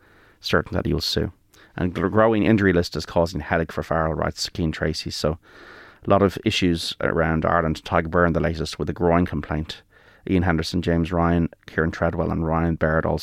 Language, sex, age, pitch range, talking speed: English, male, 30-49, 80-100 Hz, 195 wpm